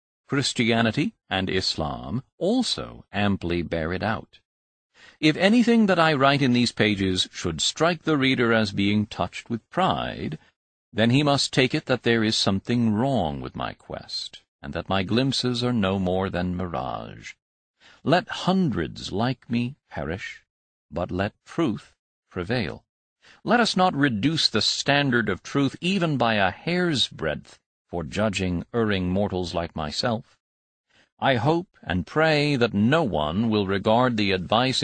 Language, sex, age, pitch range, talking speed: English, male, 50-69, 95-140 Hz, 150 wpm